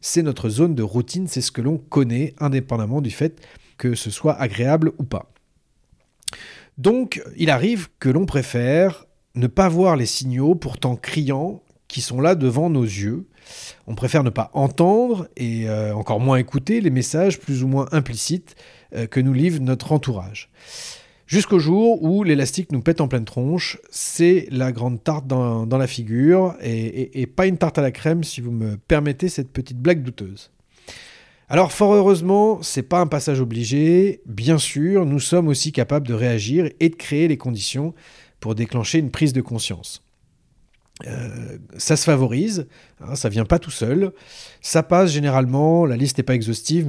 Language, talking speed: French, 180 wpm